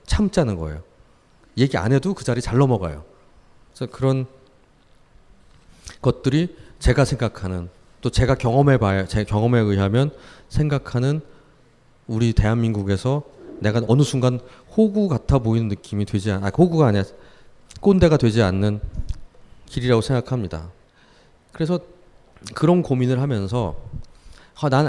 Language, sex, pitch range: Korean, male, 105-160 Hz